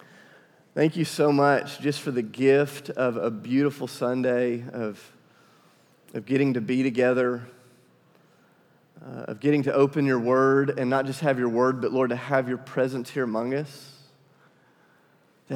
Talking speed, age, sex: 160 wpm, 30-49, male